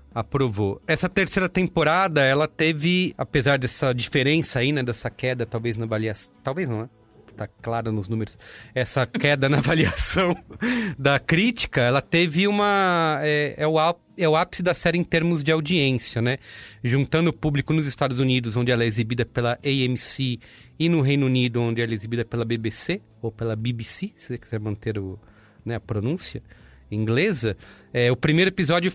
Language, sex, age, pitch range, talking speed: English, male, 30-49, 120-155 Hz, 165 wpm